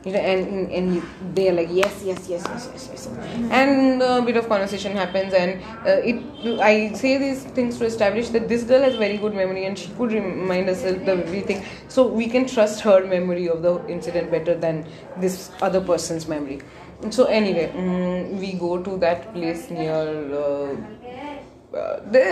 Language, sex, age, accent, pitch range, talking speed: Hindi, female, 20-39, native, 185-255 Hz, 195 wpm